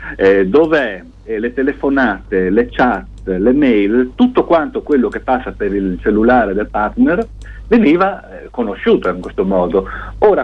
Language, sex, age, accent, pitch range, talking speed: Italian, male, 50-69, native, 100-150 Hz, 145 wpm